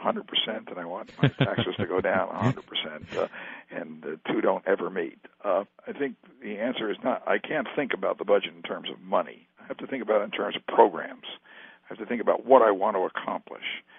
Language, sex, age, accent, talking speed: English, male, 60-79, American, 235 wpm